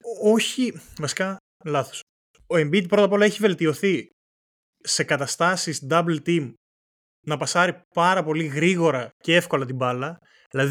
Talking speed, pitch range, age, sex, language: 135 wpm, 135-180 Hz, 20-39, male, Greek